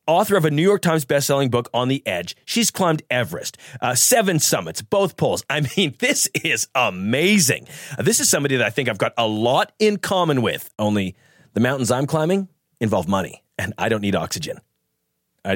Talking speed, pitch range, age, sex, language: 195 wpm, 115-160 Hz, 30-49, male, English